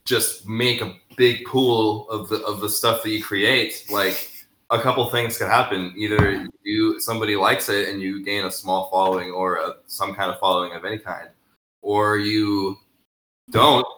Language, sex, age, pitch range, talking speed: English, male, 20-39, 95-110 Hz, 175 wpm